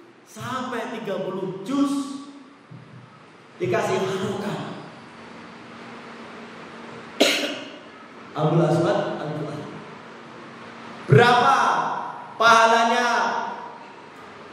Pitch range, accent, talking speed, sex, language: 170-235 Hz, native, 45 wpm, male, Indonesian